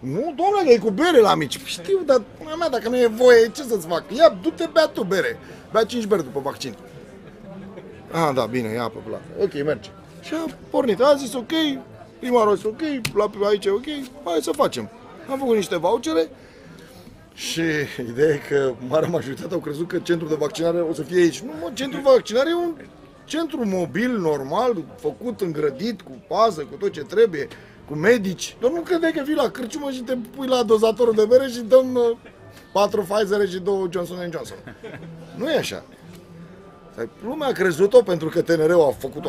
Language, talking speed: Romanian, 190 wpm